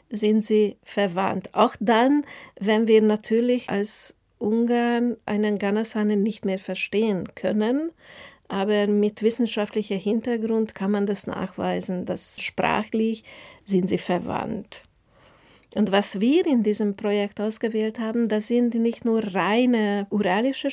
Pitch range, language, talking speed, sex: 205-240 Hz, German, 125 wpm, female